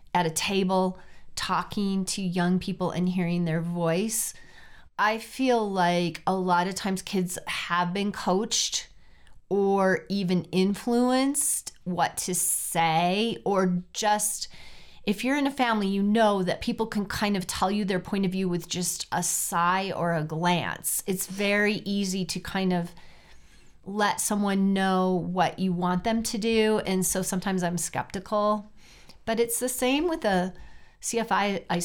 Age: 30-49